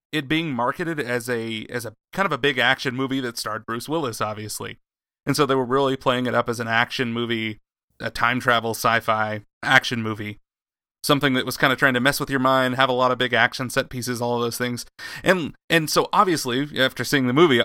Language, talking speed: English, 230 wpm